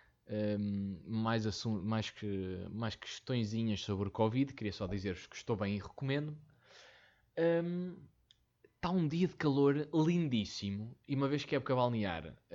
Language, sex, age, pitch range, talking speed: Portuguese, male, 20-39, 100-135 Hz, 135 wpm